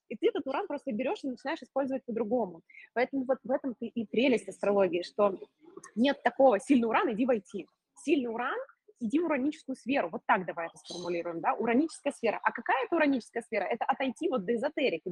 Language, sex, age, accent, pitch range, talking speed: Russian, female, 20-39, native, 205-270 Hz, 190 wpm